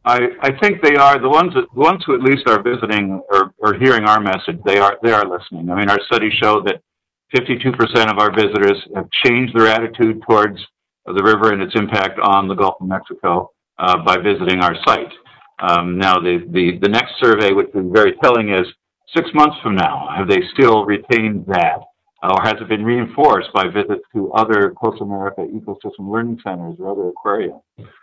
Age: 50-69